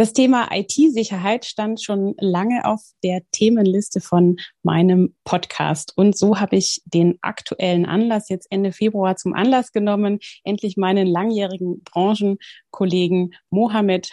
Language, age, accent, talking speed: German, 30-49, German, 125 wpm